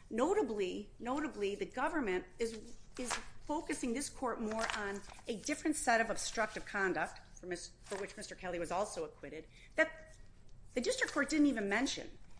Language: English